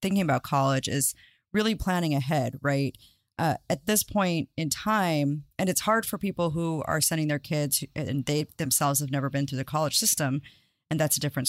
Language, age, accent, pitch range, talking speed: English, 30-49, American, 145-180 Hz, 200 wpm